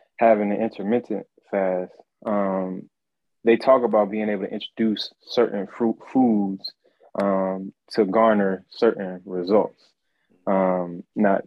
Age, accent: 20-39, American